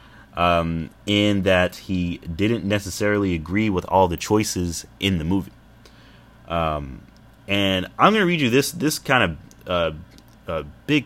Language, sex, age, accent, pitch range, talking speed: English, male, 30-49, American, 85-105 Hz, 150 wpm